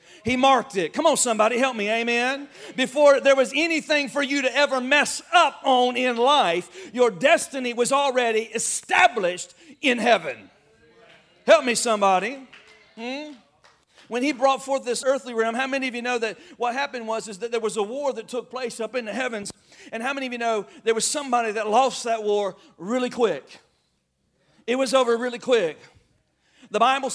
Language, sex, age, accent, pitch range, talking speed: English, male, 40-59, American, 220-270 Hz, 190 wpm